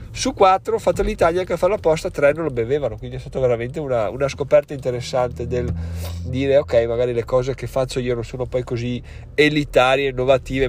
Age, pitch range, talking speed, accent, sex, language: 30-49, 110-135 Hz, 195 wpm, native, male, Italian